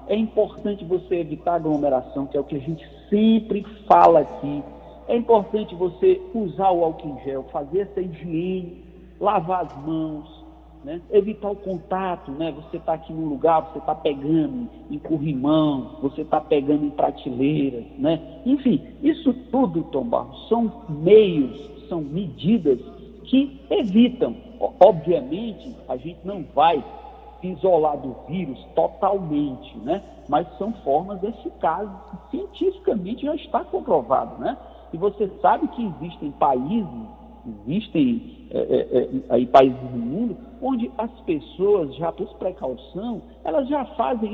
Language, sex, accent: Portuguese, male, Brazilian